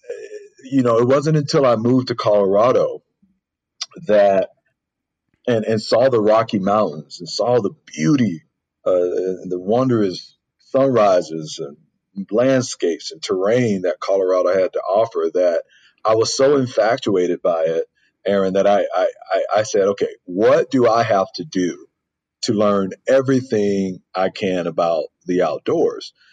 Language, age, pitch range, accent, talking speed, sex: English, 40-59, 95-150 Hz, American, 140 wpm, male